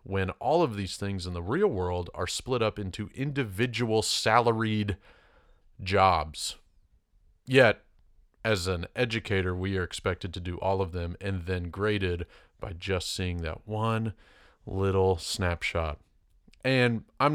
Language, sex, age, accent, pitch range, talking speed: English, male, 30-49, American, 90-110 Hz, 140 wpm